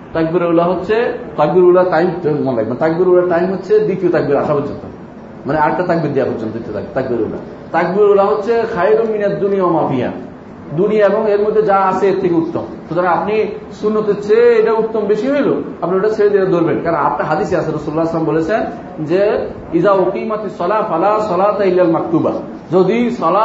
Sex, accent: male, native